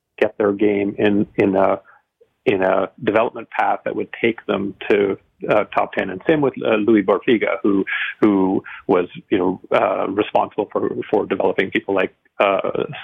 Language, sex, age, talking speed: English, male, 40-59, 170 wpm